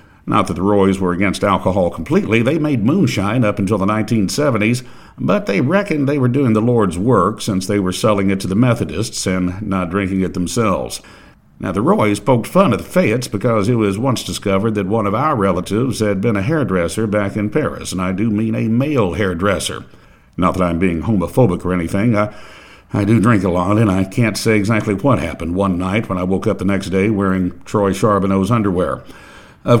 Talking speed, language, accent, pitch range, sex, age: 205 wpm, English, American, 95-120 Hz, male, 60-79